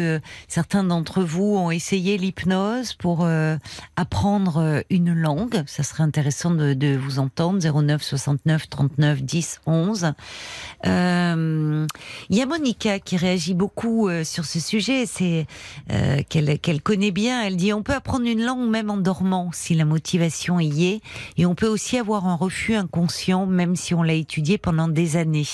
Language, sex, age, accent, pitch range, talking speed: French, female, 50-69, French, 155-190 Hz, 165 wpm